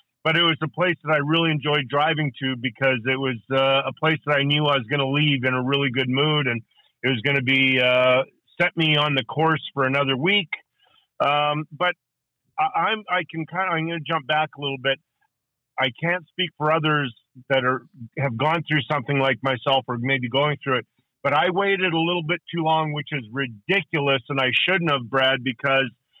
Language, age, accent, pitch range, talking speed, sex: English, 40-59, American, 135-160 Hz, 220 wpm, male